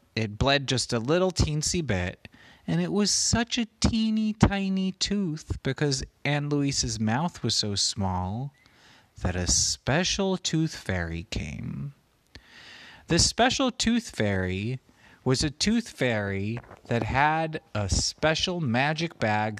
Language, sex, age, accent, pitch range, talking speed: English, male, 30-49, American, 105-160 Hz, 130 wpm